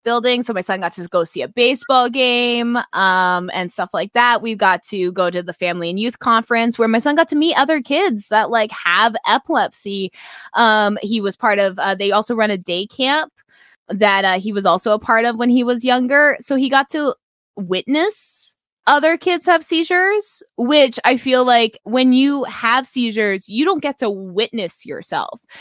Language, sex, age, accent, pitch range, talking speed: English, female, 20-39, American, 195-270 Hz, 200 wpm